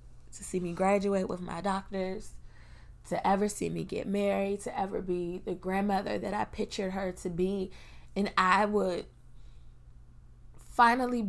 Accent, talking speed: American, 150 wpm